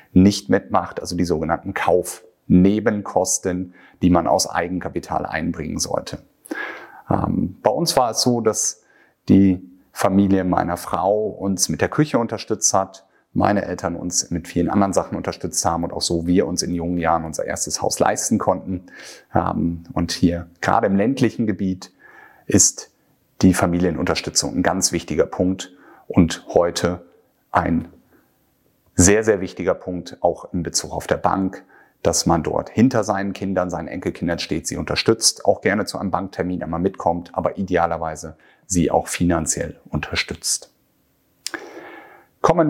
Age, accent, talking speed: 30-49, German, 140 wpm